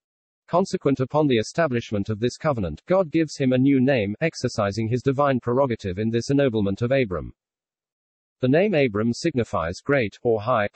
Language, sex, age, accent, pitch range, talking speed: English, male, 40-59, British, 110-145 Hz, 160 wpm